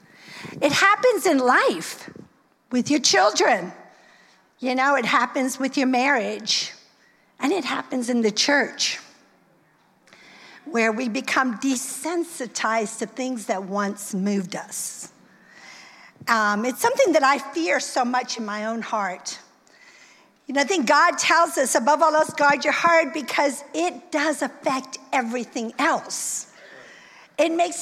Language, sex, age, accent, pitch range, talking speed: English, female, 50-69, American, 220-285 Hz, 135 wpm